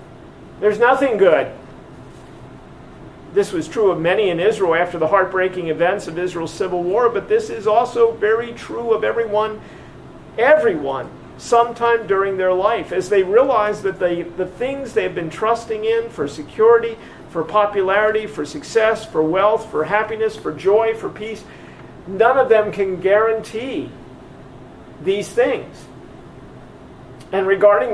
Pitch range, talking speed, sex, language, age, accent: 205-270 Hz, 140 wpm, male, English, 50-69, American